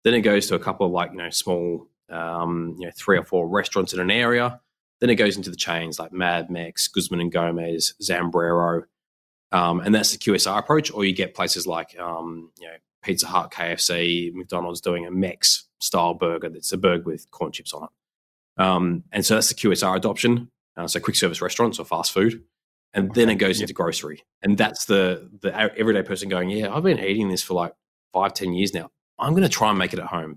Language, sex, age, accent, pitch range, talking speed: English, male, 20-39, Australian, 85-100 Hz, 225 wpm